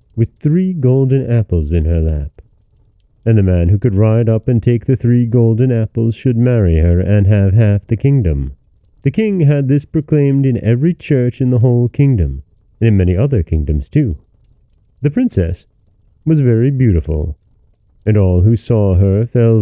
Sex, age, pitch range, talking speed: male, 30-49, 95-135 Hz, 175 wpm